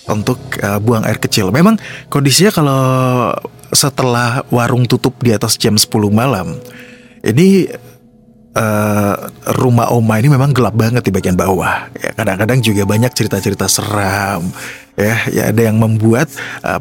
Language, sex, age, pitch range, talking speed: Indonesian, male, 30-49, 110-130 Hz, 140 wpm